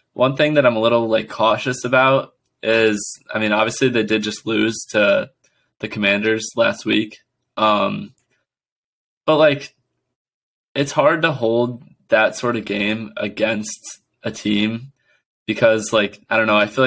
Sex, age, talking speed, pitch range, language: male, 20-39, 155 wpm, 105-120 Hz, English